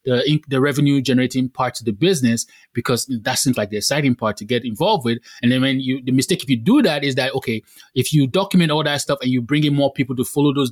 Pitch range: 125-165 Hz